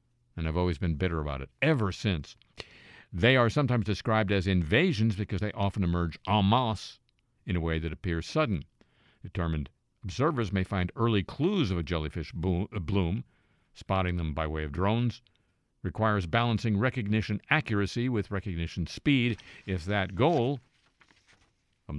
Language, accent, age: English, American, 50-69